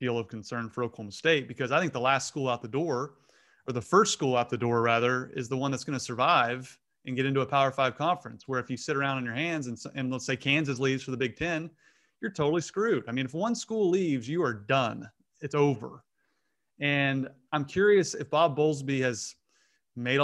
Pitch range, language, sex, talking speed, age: 125-160 Hz, English, male, 230 wpm, 30-49